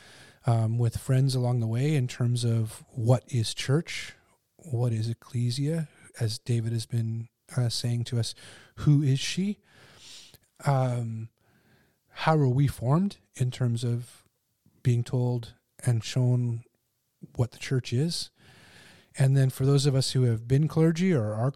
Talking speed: 150 wpm